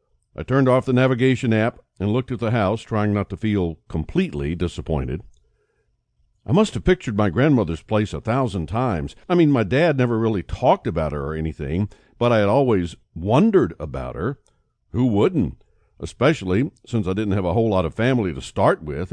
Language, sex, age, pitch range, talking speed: English, male, 60-79, 95-125 Hz, 190 wpm